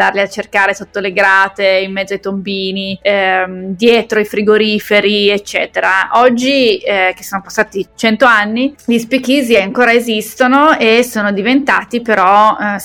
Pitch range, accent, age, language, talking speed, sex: 190-215 Hz, native, 20-39, Italian, 140 wpm, female